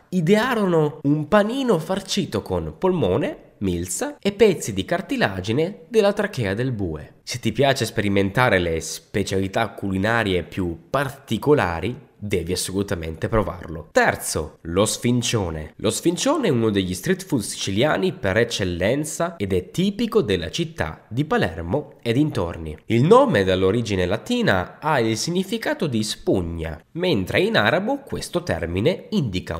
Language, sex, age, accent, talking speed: Italian, male, 10-29, native, 130 wpm